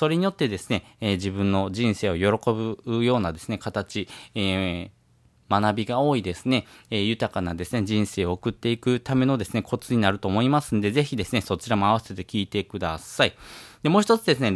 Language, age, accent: Japanese, 20-39, native